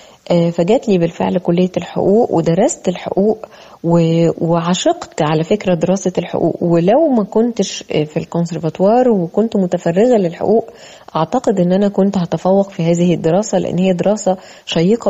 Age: 20-39